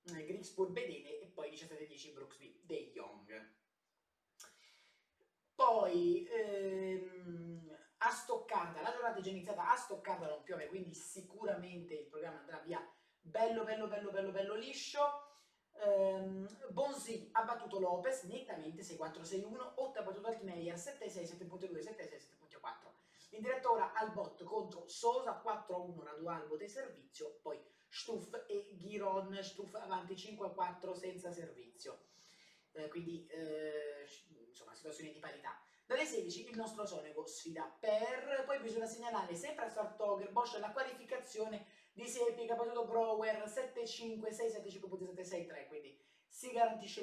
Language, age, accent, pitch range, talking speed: Italian, 20-39, native, 170-240 Hz, 125 wpm